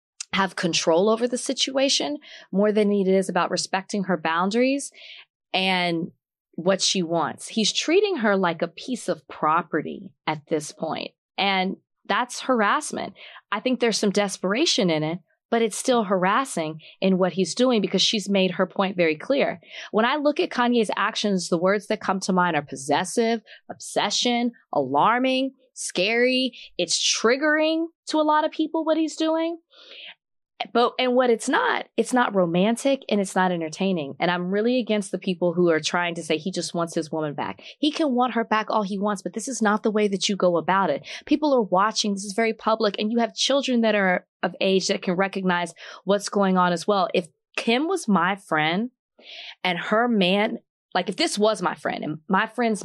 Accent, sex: American, female